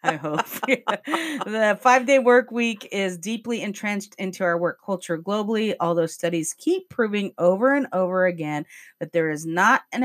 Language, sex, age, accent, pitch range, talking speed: English, female, 40-59, American, 160-200 Hz, 165 wpm